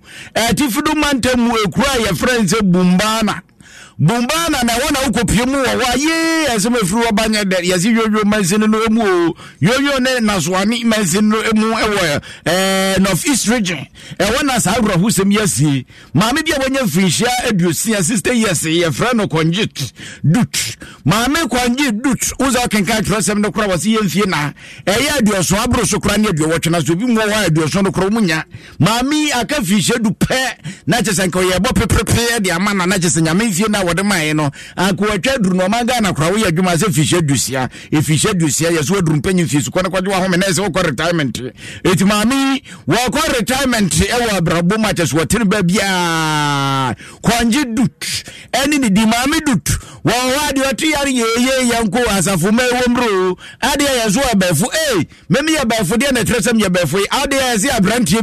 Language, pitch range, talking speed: English, 175-240 Hz, 165 wpm